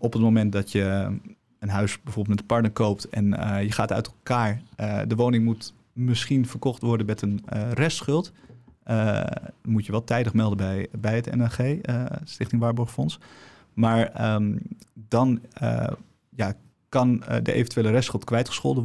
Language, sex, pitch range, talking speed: Dutch, male, 110-130 Hz, 165 wpm